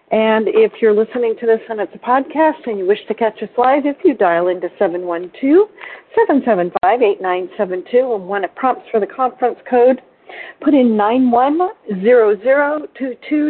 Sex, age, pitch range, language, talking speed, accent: female, 50-69, 190-245 Hz, English, 150 wpm, American